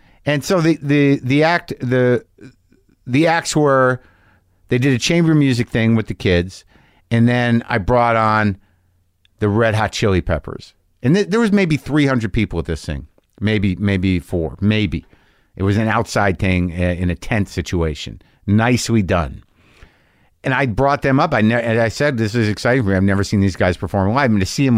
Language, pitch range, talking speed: English, 95-120 Hz, 195 wpm